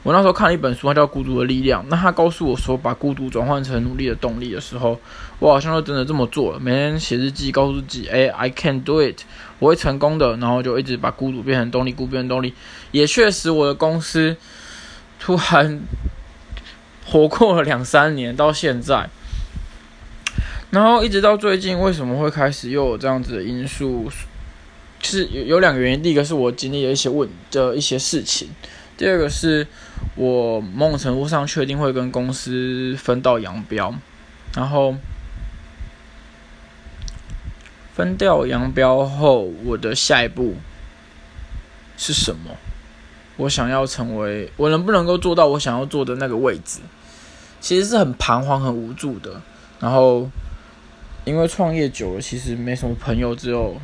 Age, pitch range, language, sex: 20-39, 115-145 Hz, Chinese, male